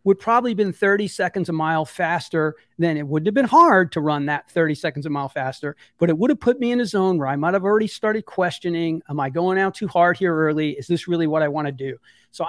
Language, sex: English, male